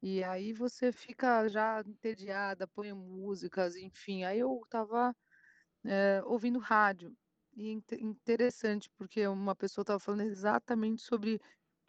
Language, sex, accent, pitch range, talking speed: Portuguese, female, Brazilian, 195-240 Hz, 120 wpm